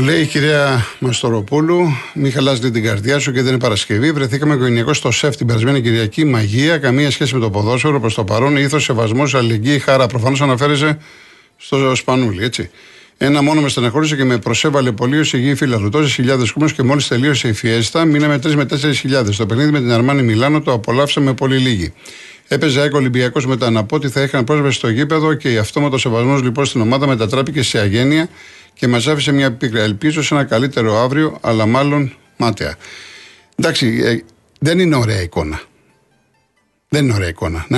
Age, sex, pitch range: 50-69, male, 120-150 Hz